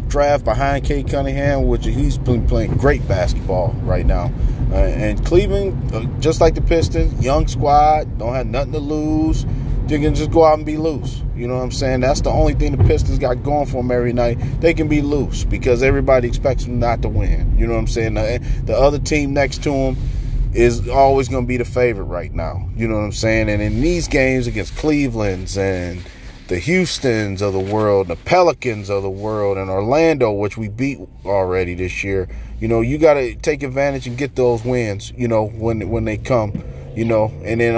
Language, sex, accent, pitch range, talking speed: English, male, American, 110-140 Hz, 215 wpm